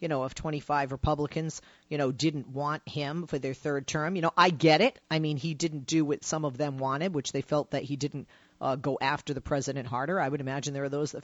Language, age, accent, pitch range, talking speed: English, 40-59, American, 140-160 Hz, 255 wpm